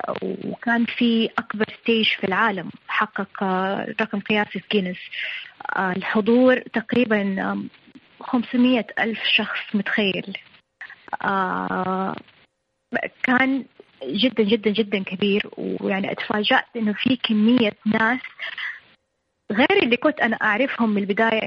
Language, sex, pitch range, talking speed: Arabic, female, 205-255 Hz, 100 wpm